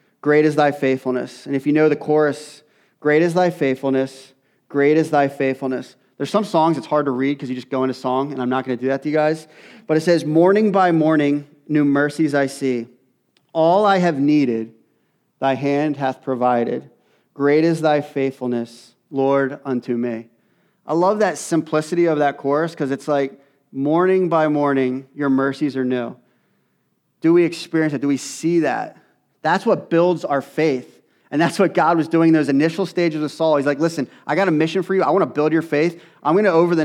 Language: English